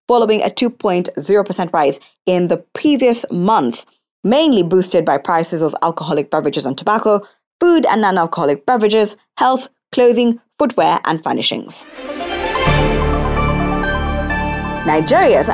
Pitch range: 165-240 Hz